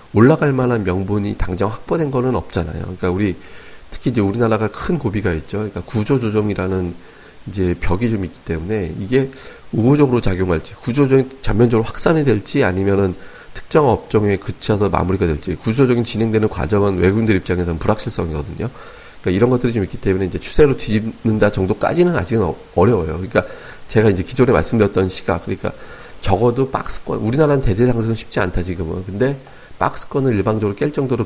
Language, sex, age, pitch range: Korean, male, 40-59, 90-125 Hz